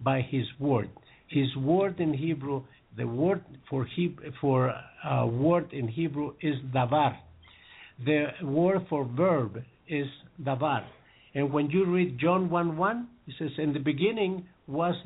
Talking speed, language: 150 wpm, English